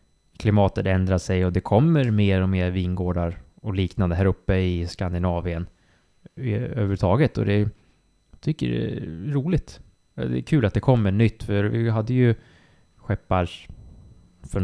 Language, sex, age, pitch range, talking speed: Swedish, male, 20-39, 95-120 Hz, 150 wpm